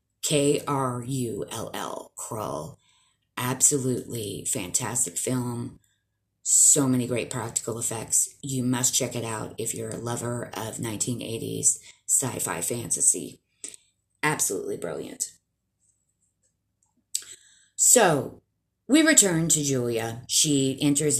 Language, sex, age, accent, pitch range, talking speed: English, female, 30-49, American, 105-140 Hz, 90 wpm